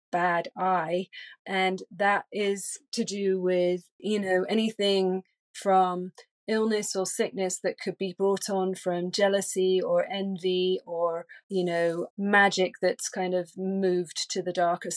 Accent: British